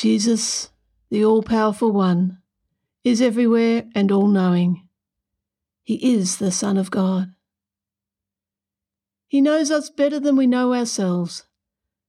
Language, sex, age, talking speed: English, female, 60-79, 110 wpm